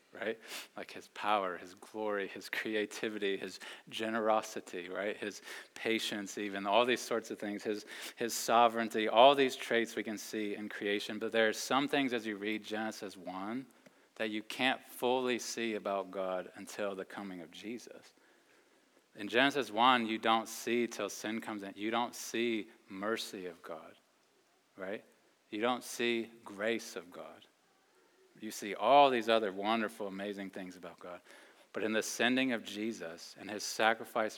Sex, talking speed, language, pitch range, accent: male, 165 wpm, English, 100-115 Hz, American